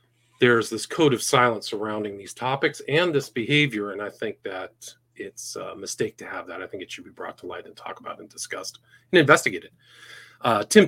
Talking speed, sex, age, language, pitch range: 210 wpm, male, 40-59, English, 110-125 Hz